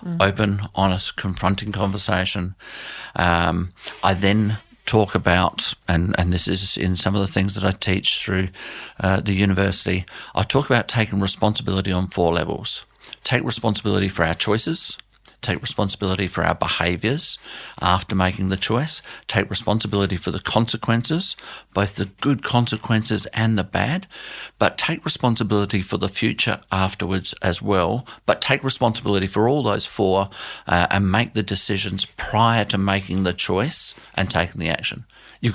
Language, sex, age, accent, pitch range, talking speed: English, male, 50-69, Australian, 95-110 Hz, 150 wpm